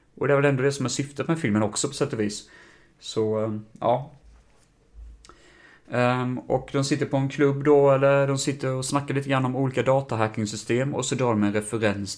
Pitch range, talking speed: 105-130 Hz, 200 wpm